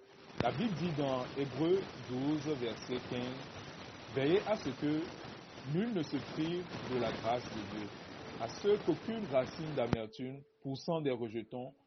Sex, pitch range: male, 125-170 Hz